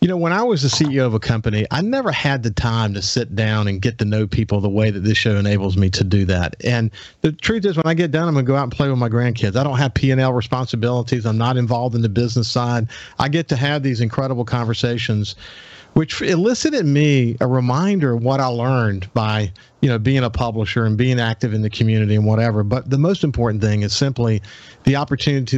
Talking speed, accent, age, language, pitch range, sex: 240 wpm, American, 50-69, English, 115-150 Hz, male